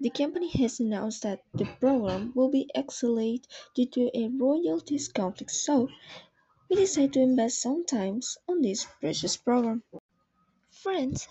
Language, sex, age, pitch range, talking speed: English, female, 20-39, 200-255 Hz, 140 wpm